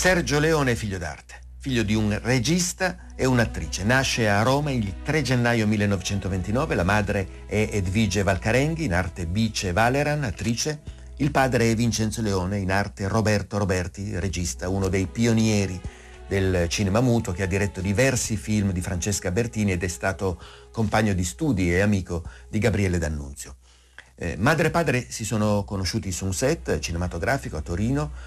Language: Italian